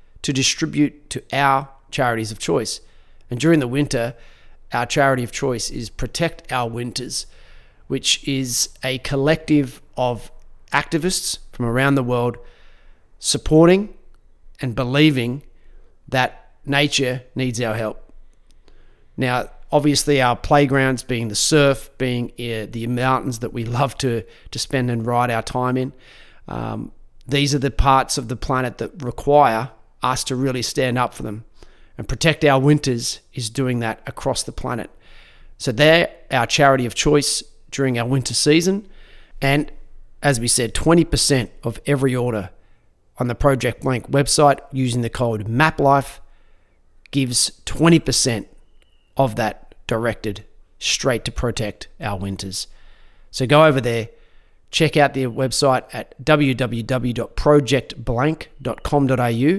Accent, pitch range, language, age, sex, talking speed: Australian, 115-140 Hz, English, 30-49, male, 135 wpm